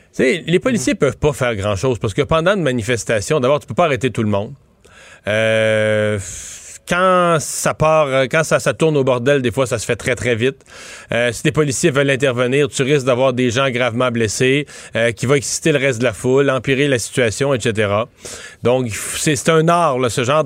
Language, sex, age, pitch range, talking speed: French, male, 40-59, 125-180 Hz, 215 wpm